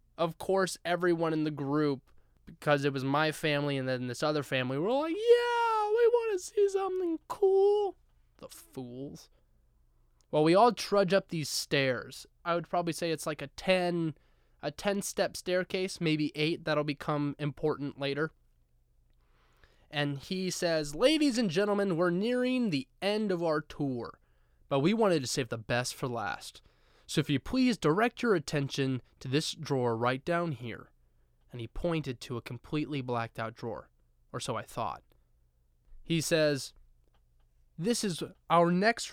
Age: 20-39